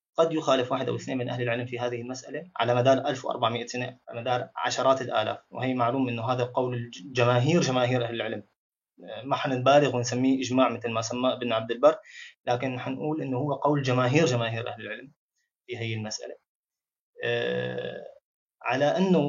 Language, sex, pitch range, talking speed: Arabic, male, 120-150 Hz, 160 wpm